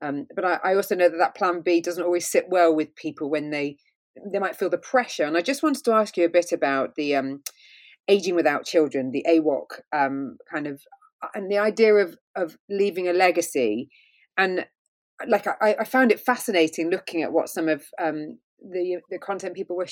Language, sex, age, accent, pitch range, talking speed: English, female, 30-49, British, 155-195 Hz, 210 wpm